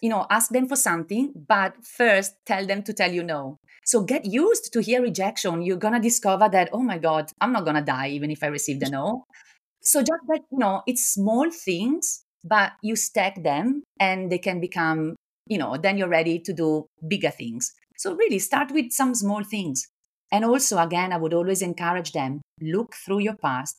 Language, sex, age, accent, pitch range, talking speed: English, female, 40-59, Italian, 160-220 Hz, 205 wpm